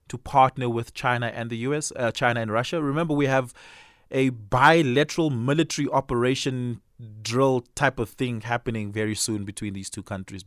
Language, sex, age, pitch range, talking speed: English, male, 20-39, 110-140 Hz, 165 wpm